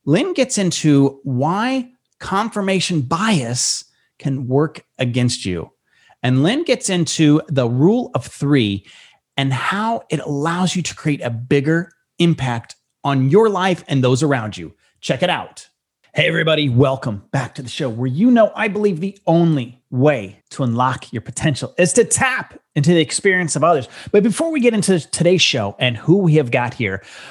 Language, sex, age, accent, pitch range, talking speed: English, male, 30-49, American, 130-185 Hz, 170 wpm